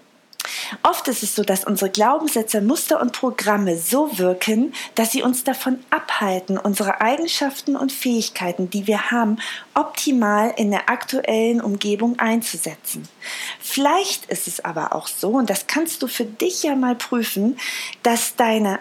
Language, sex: German, female